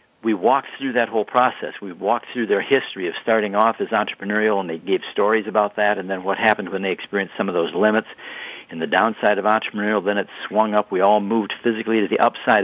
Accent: American